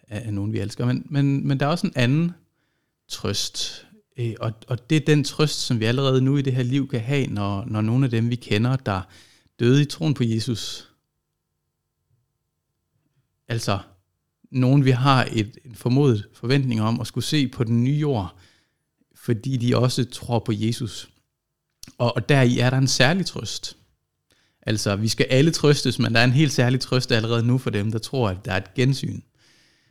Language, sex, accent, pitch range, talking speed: Danish, male, native, 110-140 Hz, 195 wpm